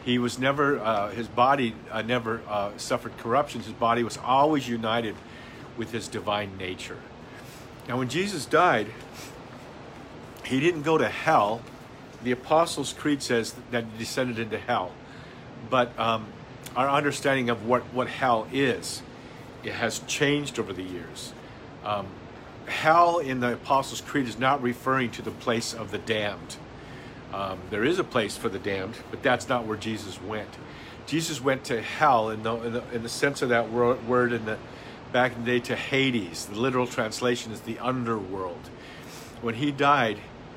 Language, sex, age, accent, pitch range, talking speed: English, male, 50-69, American, 115-130 Hz, 165 wpm